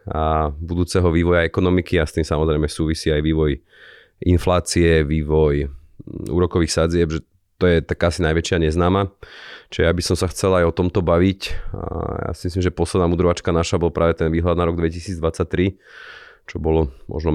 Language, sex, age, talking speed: Slovak, male, 30-49, 175 wpm